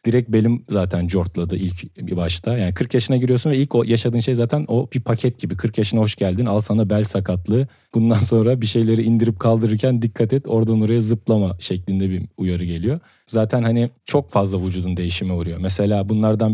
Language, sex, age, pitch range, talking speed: Turkish, male, 40-59, 100-120 Hz, 190 wpm